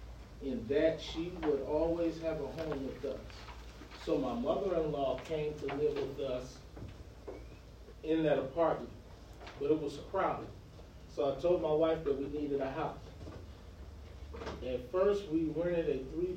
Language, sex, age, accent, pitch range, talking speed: English, male, 40-59, American, 130-165 Hz, 150 wpm